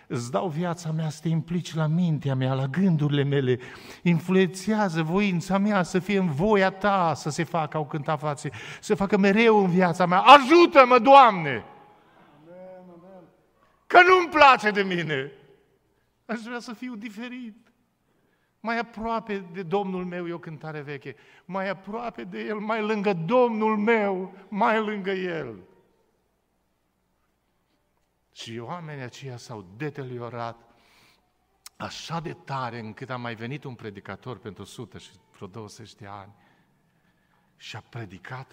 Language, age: Romanian, 50-69